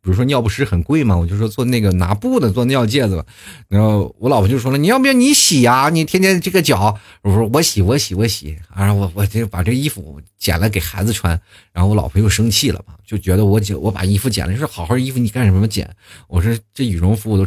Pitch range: 95-120 Hz